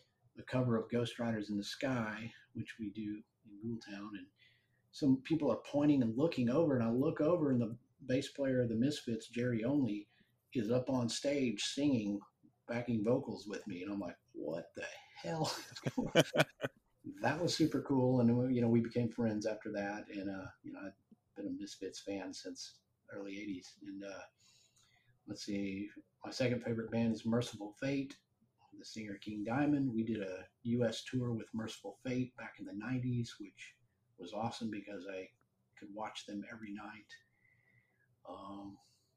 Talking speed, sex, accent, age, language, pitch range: 170 wpm, male, American, 50-69, English, 105-125 Hz